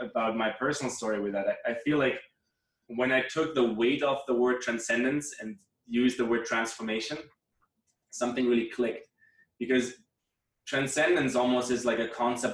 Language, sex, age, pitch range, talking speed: English, male, 20-39, 115-135 Hz, 160 wpm